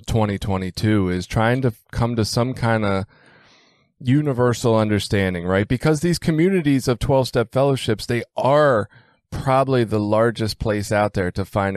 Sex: male